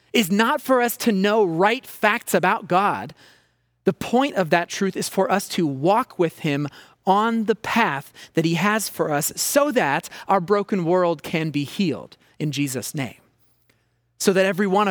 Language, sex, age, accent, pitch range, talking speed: English, male, 30-49, American, 145-205 Hz, 180 wpm